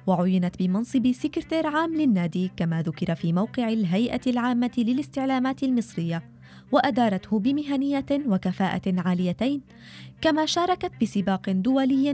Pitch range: 180-280 Hz